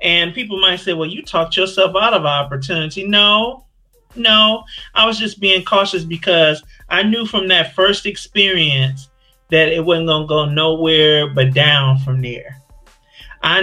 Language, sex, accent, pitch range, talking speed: English, male, American, 150-190 Hz, 160 wpm